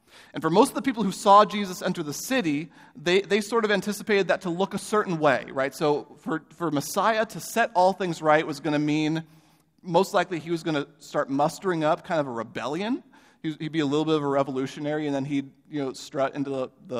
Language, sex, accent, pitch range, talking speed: English, male, American, 140-175 Hz, 240 wpm